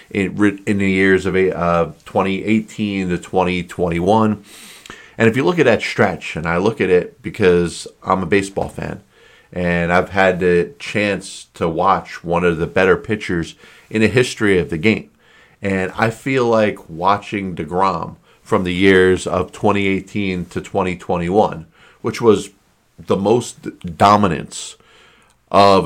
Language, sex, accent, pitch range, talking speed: English, male, American, 90-100 Hz, 145 wpm